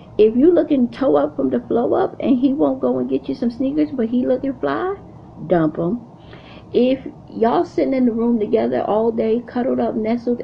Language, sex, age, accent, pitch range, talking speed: English, female, 40-59, American, 175-230 Hz, 205 wpm